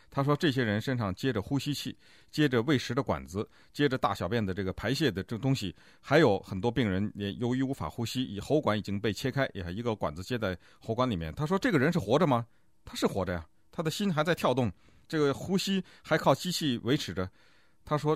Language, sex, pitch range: Chinese, male, 105-150 Hz